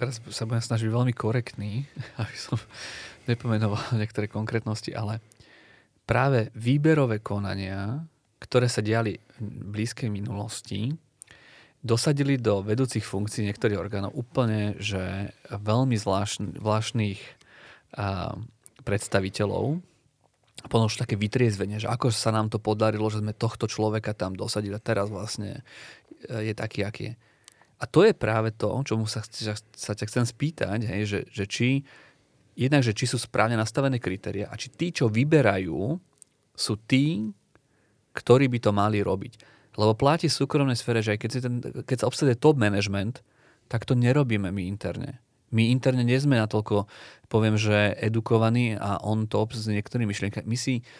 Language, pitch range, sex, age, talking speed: Slovak, 105-125 Hz, male, 30-49, 145 wpm